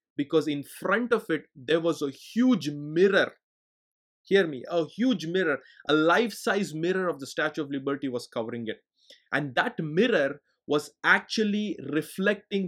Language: English